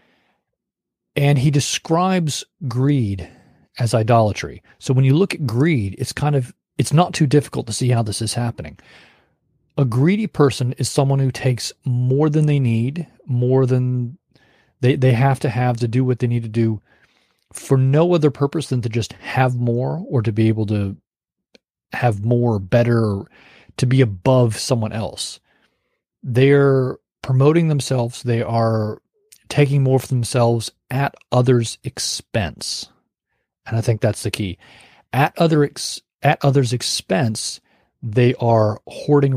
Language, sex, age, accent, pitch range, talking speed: English, male, 40-59, American, 115-140 Hz, 150 wpm